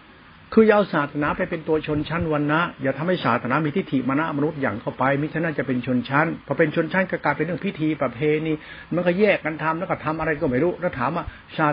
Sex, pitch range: male, 135-175 Hz